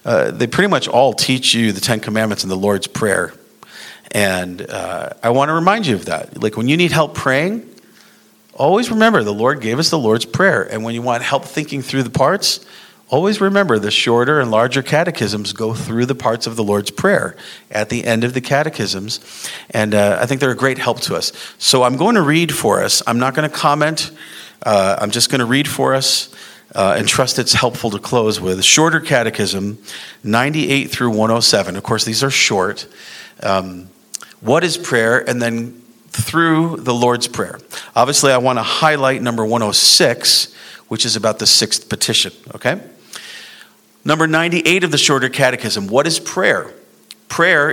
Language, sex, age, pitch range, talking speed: English, male, 40-59, 110-155 Hz, 185 wpm